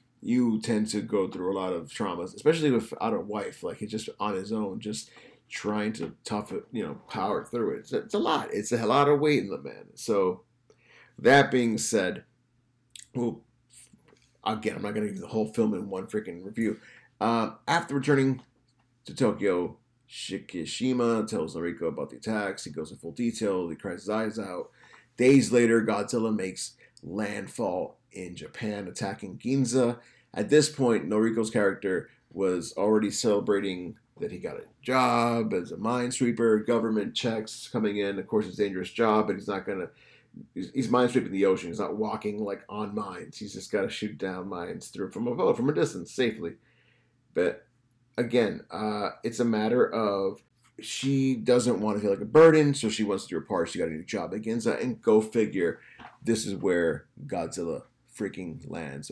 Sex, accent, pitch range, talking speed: male, American, 105-125 Hz, 185 wpm